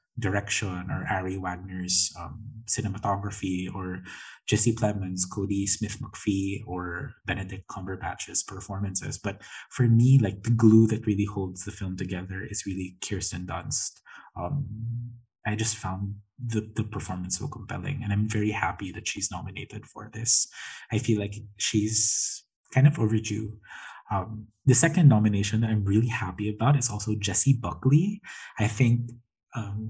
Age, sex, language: 20-39, male, English